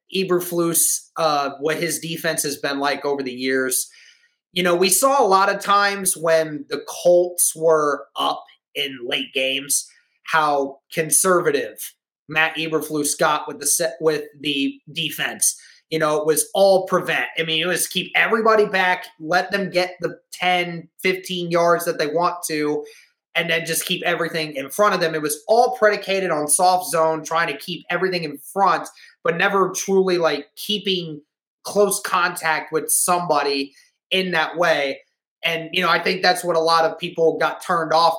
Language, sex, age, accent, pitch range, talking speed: English, male, 20-39, American, 155-180 Hz, 170 wpm